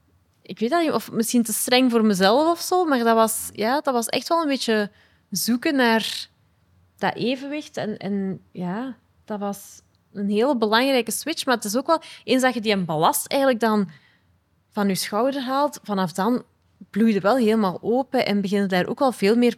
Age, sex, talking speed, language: 20-39, female, 200 wpm, Dutch